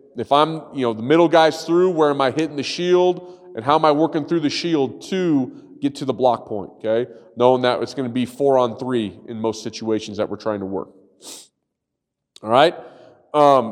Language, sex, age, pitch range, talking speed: English, male, 30-49, 125-170 Hz, 210 wpm